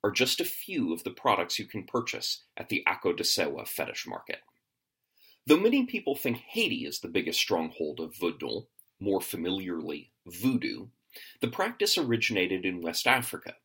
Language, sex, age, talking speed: English, male, 30-49, 155 wpm